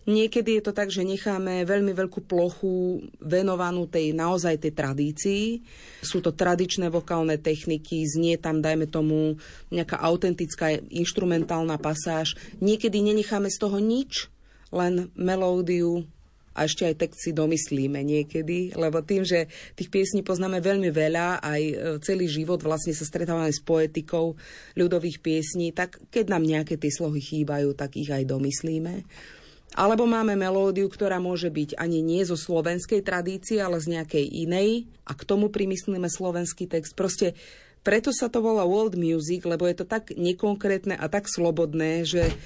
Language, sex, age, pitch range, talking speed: Slovak, female, 30-49, 160-195 Hz, 150 wpm